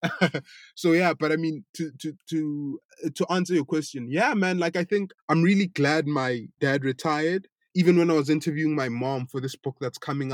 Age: 20-39